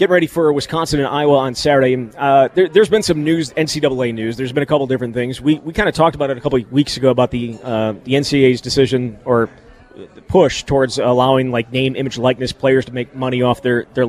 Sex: male